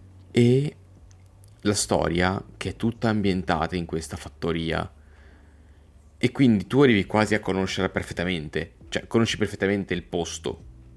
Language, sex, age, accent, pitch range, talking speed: Italian, male, 20-39, native, 85-105 Hz, 125 wpm